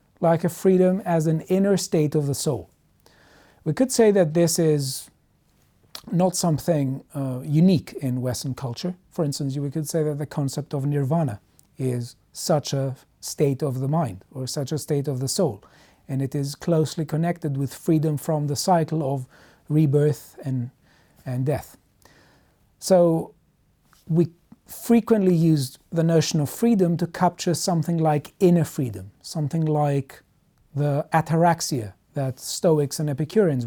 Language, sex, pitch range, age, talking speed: English, male, 135-165 Hz, 40-59, 150 wpm